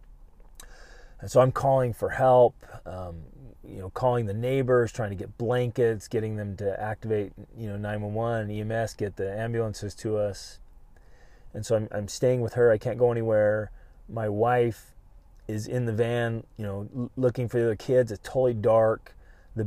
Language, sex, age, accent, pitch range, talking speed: English, male, 30-49, American, 100-125 Hz, 185 wpm